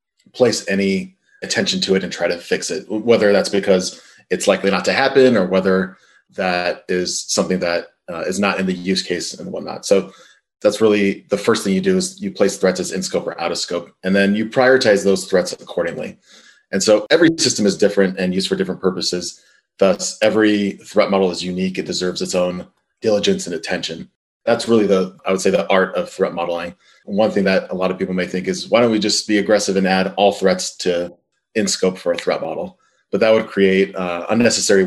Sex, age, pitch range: male, 30-49, 90-100 Hz